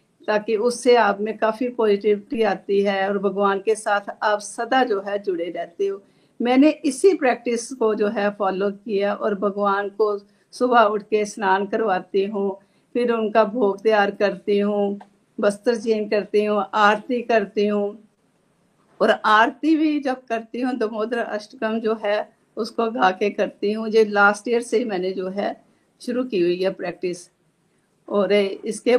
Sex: female